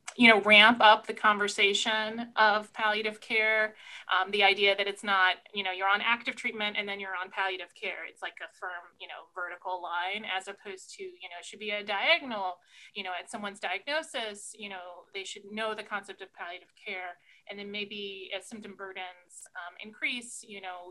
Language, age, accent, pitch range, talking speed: English, 30-49, American, 190-215 Hz, 200 wpm